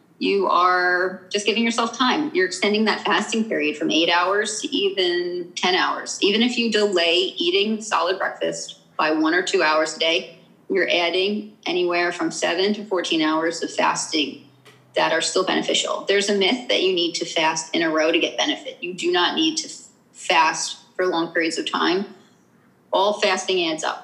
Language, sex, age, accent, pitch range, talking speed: English, female, 30-49, American, 175-290 Hz, 185 wpm